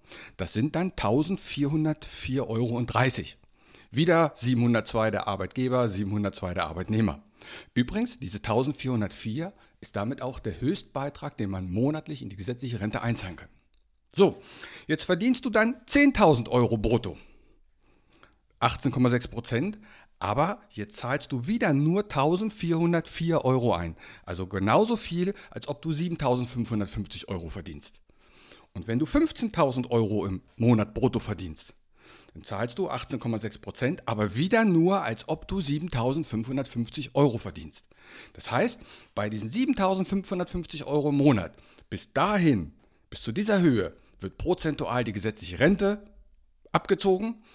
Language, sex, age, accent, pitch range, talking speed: German, male, 60-79, German, 105-165 Hz, 125 wpm